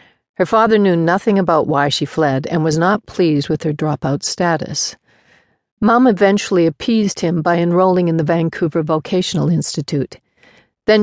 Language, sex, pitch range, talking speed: English, female, 155-180 Hz, 150 wpm